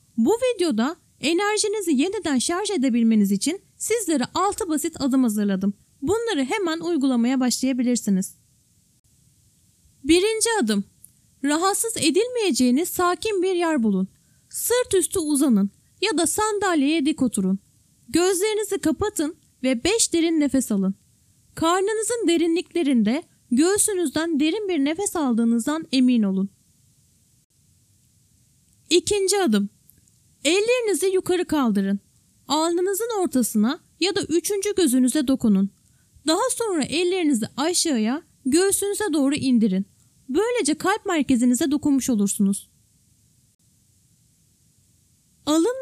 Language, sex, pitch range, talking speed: Turkish, female, 225-370 Hz, 95 wpm